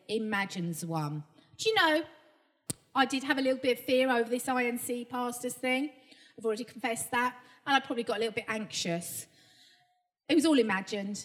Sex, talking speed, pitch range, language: female, 180 wpm, 225-315 Hz, English